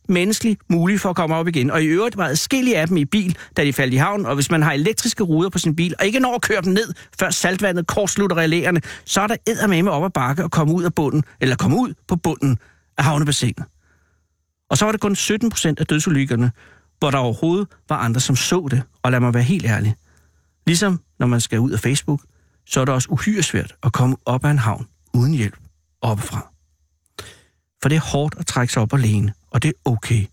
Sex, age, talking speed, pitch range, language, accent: male, 60-79, 235 wpm, 110-170 Hz, Danish, native